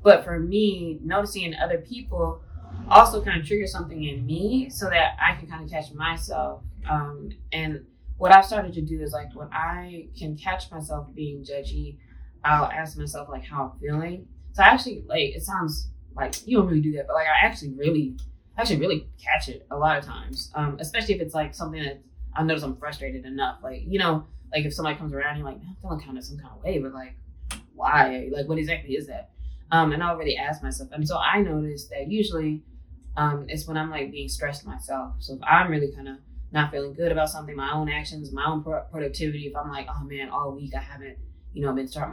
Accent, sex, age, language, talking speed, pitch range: American, female, 20-39, English, 225 wpm, 135-160 Hz